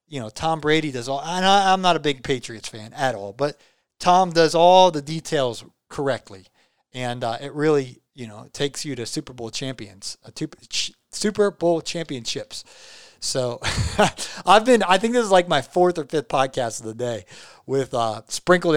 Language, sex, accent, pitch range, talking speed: English, male, American, 125-155 Hz, 195 wpm